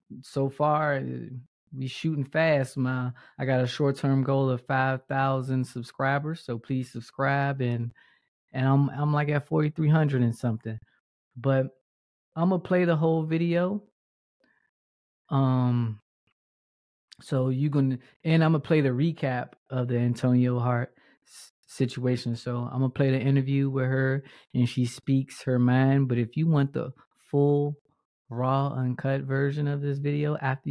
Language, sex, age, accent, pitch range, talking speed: English, male, 20-39, American, 125-145 Hz, 155 wpm